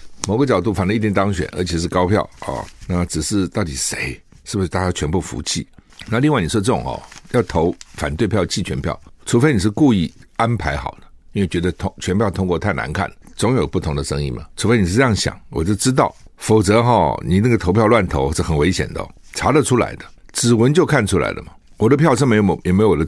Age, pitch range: 60-79, 90-125 Hz